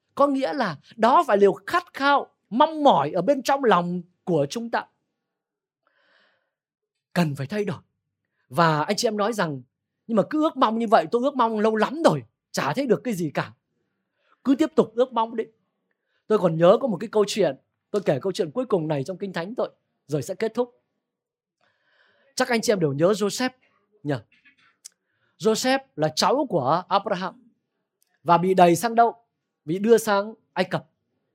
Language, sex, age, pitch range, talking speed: Vietnamese, male, 20-39, 180-255 Hz, 185 wpm